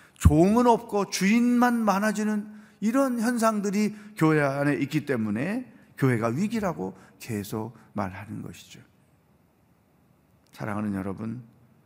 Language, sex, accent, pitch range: Korean, male, native, 110-155 Hz